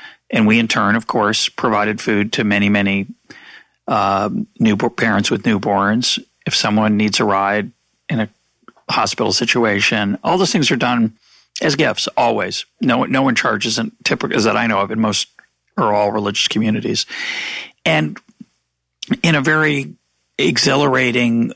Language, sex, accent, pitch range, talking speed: English, male, American, 105-125 Hz, 150 wpm